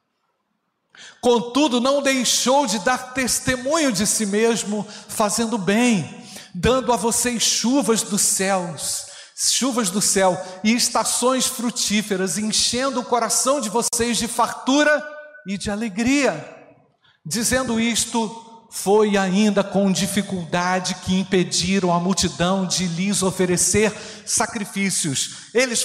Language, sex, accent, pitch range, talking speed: Portuguese, male, Brazilian, 175-230 Hz, 110 wpm